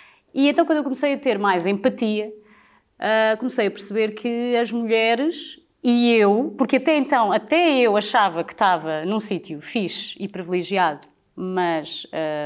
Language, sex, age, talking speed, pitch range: Portuguese, female, 20-39, 155 wpm, 185-270 Hz